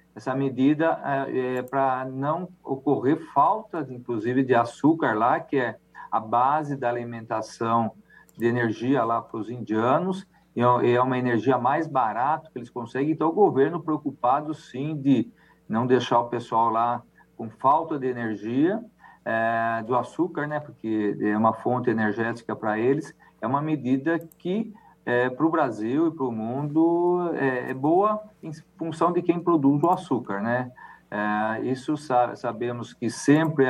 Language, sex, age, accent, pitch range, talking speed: Portuguese, male, 50-69, Brazilian, 120-160 Hz, 155 wpm